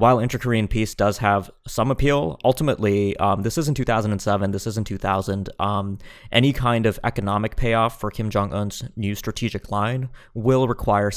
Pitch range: 100-115 Hz